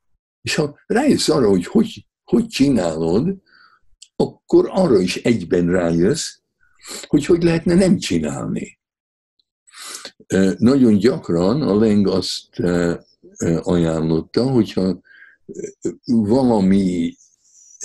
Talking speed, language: 85 wpm, Hungarian